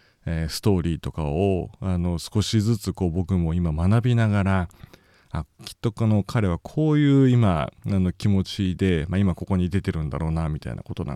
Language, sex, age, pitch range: Japanese, male, 40-59, 85-105 Hz